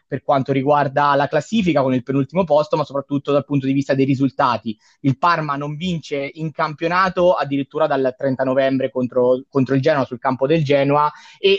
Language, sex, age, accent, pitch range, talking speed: Italian, male, 20-39, native, 140-170 Hz, 185 wpm